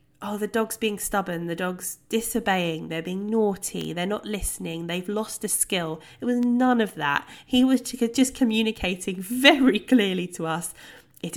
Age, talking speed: 20-39, 170 wpm